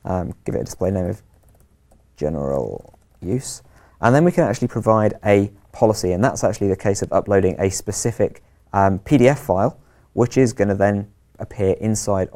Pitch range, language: 95-115 Hz, English